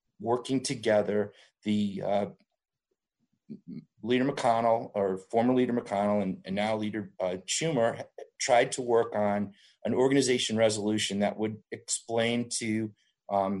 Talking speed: 125 wpm